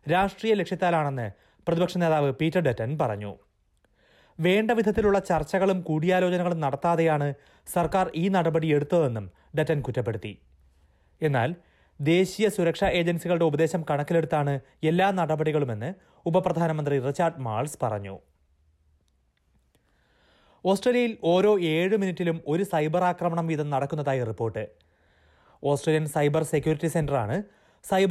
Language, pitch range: Malayalam, 135-180 Hz